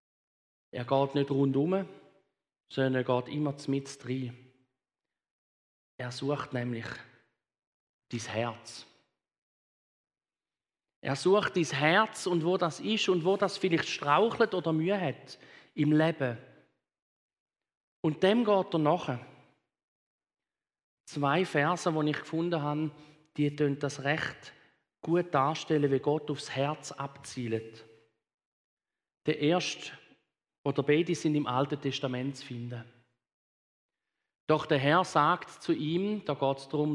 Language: German